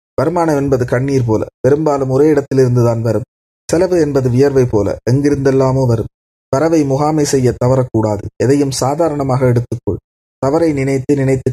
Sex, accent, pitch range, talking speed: male, native, 120-145 Hz, 125 wpm